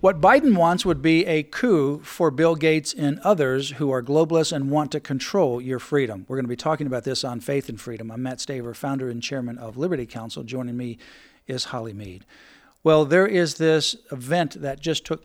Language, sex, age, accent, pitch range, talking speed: English, male, 50-69, American, 130-155 Hz, 215 wpm